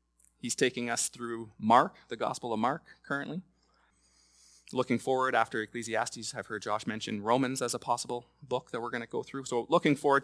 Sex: male